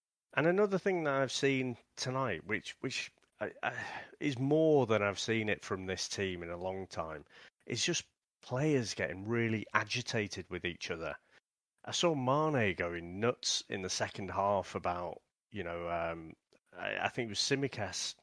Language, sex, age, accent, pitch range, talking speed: English, male, 40-59, British, 95-135 Hz, 165 wpm